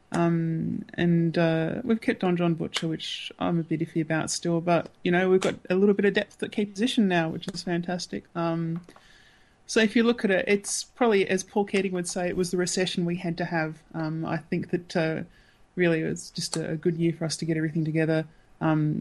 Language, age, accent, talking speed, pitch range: English, 20-39, Australian, 230 wpm, 160-180 Hz